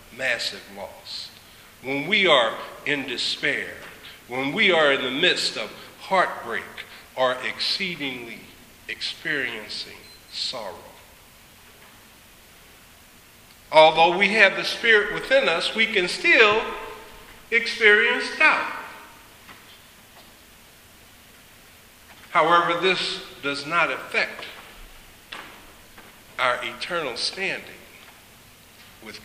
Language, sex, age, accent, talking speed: English, male, 50-69, American, 80 wpm